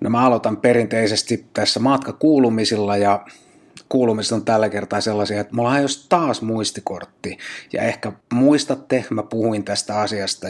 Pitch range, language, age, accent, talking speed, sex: 105-125 Hz, Finnish, 30-49, native, 130 wpm, male